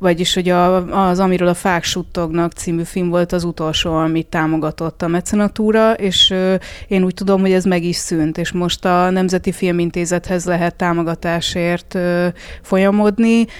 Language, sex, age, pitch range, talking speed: Hungarian, female, 20-39, 175-200 Hz, 160 wpm